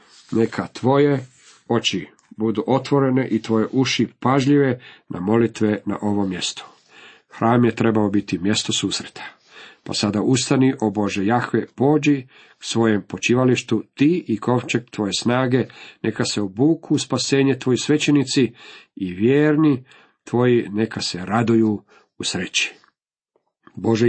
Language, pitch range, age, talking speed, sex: Croatian, 105-140 Hz, 50-69, 120 wpm, male